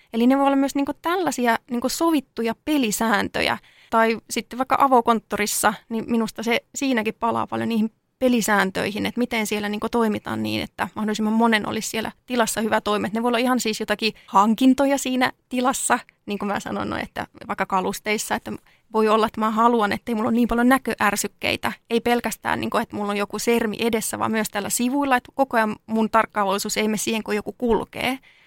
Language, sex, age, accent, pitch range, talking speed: Finnish, female, 20-39, native, 210-245 Hz, 190 wpm